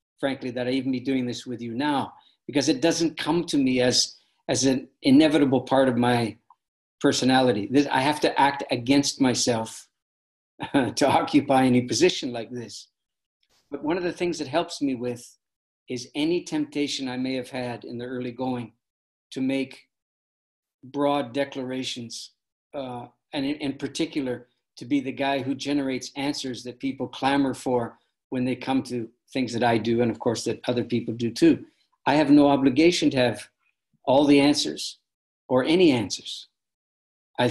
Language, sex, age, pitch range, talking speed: English, male, 50-69, 120-140 Hz, 170 wpm